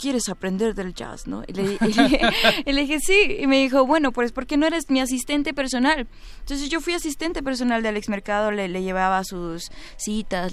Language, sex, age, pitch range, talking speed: Spanish, female, 20-39, 190-265 Hz, 220 wpm